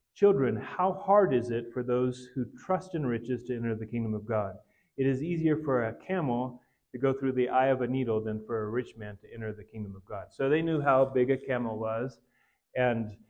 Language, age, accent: English, 30-49, American